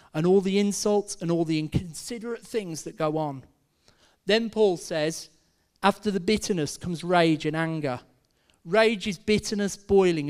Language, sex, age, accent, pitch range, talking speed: English, male, 40-59, British, 150-205 Hz, 150 wpm